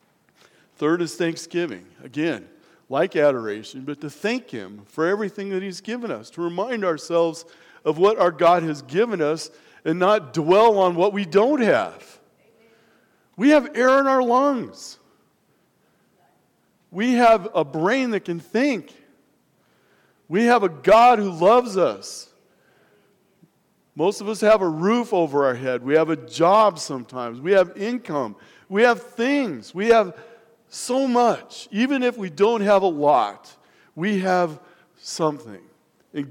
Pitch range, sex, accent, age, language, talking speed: 165-235 Hz, male, American, 50-69, English, 145 wpm